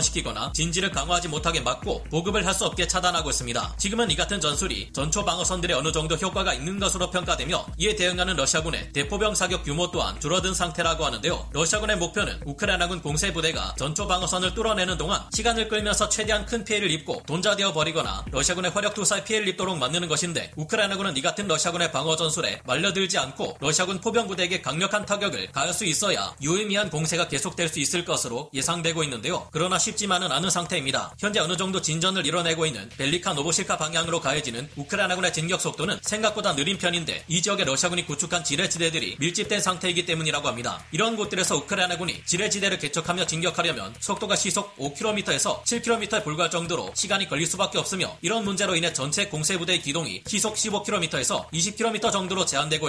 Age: 30-49